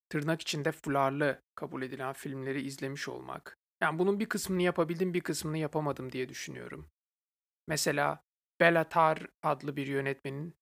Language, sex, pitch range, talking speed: Turkish, male, 140-175 Hz, 130 wpm